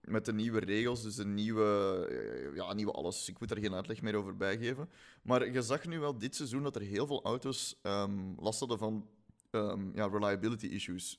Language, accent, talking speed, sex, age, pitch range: Dutch, Belgian, 200 wpm, male, 30-49, 105-130 Hz